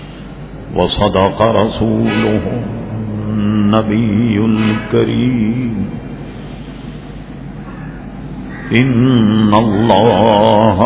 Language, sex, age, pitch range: English, male, 50-69, 105-115 Hz